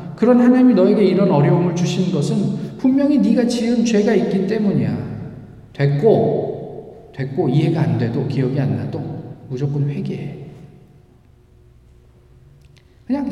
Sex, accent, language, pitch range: male, native, Korean, 130-175 Hz